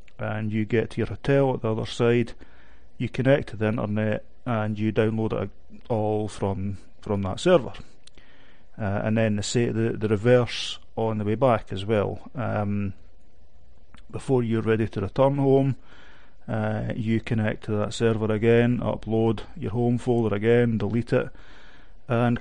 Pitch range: 105-125 Hz